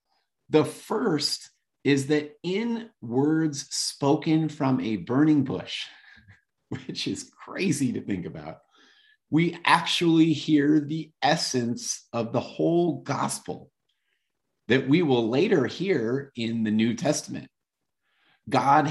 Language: English